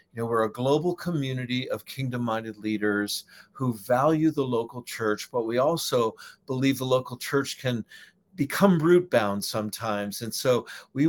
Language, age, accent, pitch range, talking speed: English, 50-69, American, 115-145 Hz, 150 wpm